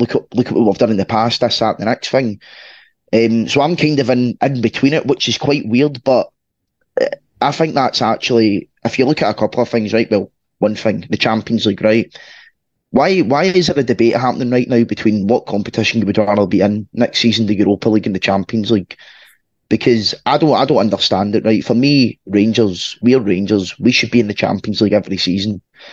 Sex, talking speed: male, 225 wpm